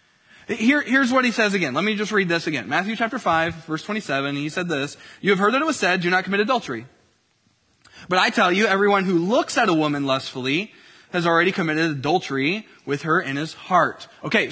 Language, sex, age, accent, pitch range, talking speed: English, male, 20-39, American, 165-225 Hz, 220 wpm